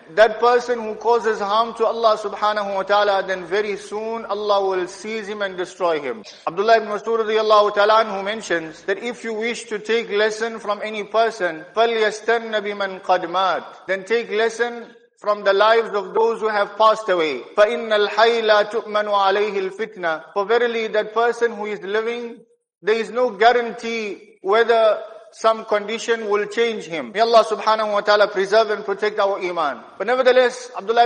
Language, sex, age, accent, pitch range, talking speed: English, male, 50-69, Indian, 205-230 Hz, 155 wpm